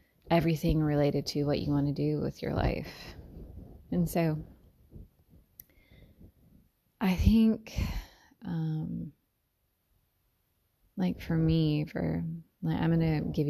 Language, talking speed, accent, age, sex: English, 110 wpm, American, 20-39, female